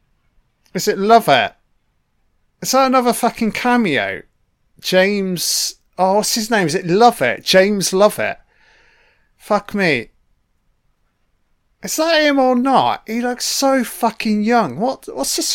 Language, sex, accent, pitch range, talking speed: English, male, British, 135-215 Hz, 140 wpm